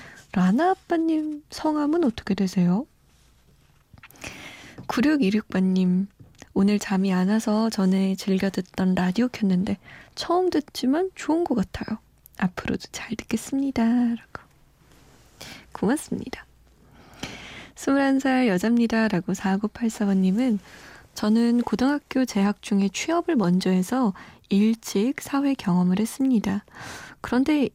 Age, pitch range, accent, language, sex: 20-39, 195-250 Hz, native, Korean, female